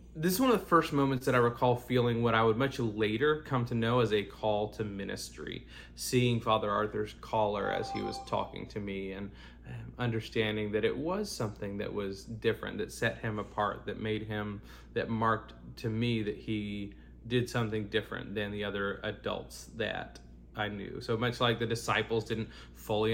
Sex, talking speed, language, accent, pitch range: male, 190 wpm, English, American, 105-120 Hz